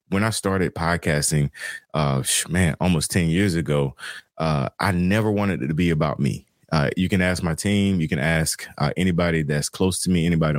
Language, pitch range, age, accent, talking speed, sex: English, 75-90 Hz, 30-49, American, 200 wpm, male